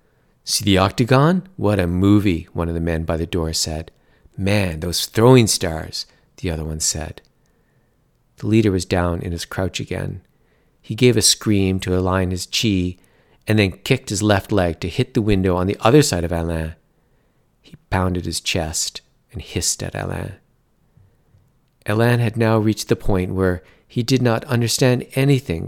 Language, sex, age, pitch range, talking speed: English, male, 50-69, 90-110 Hz, 175 wpm